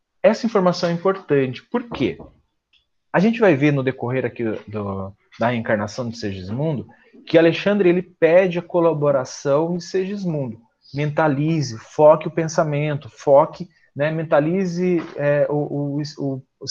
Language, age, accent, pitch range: Portuguese, 30-49, Brazilian, 130-175 Hz